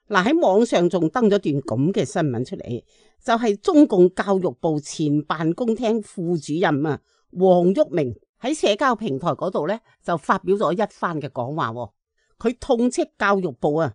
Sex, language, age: female, Chinese, 50-69